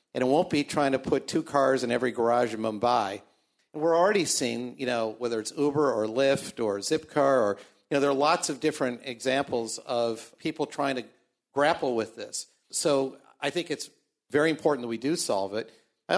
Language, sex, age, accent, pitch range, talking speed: English, male, 50-69, American, 115-145 Hz, 205 wpm